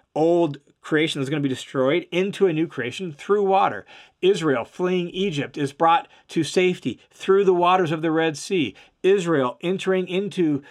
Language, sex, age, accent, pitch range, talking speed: English, male, 40-59, American, 150-195 Hz, 170 wpm